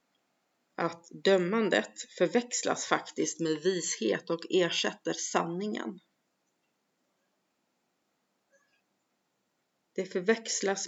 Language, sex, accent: Swedish, female, native